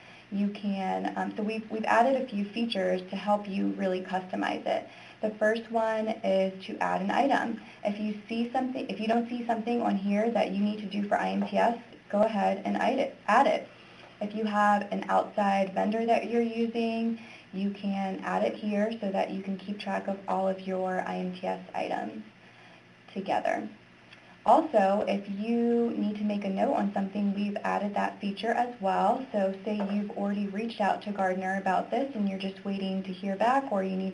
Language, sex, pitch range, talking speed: English, female, 190-220 Hz, 195 wpm